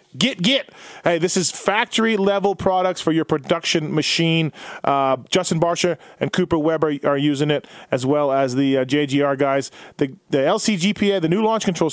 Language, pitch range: English, 140-180 Hz